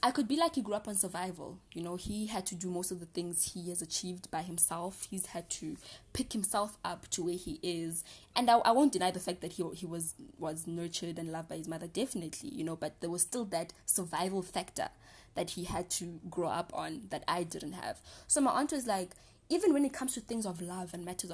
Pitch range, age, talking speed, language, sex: 165-200 Hz, 20-39, 245 wpm, English, female